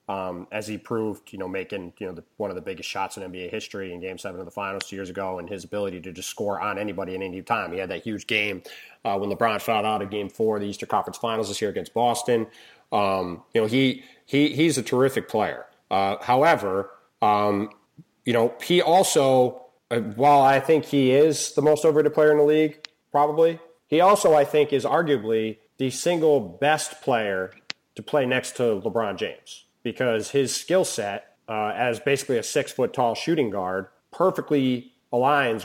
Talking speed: 200 wpm